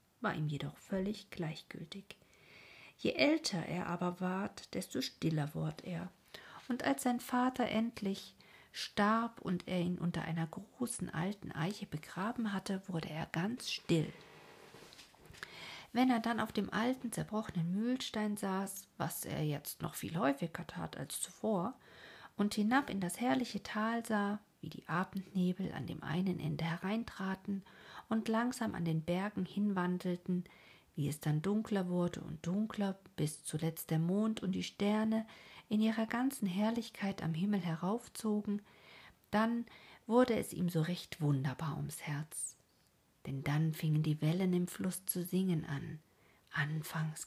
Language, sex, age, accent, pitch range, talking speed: German, female, 50-69, German, 165-215 Hz, 145 wpm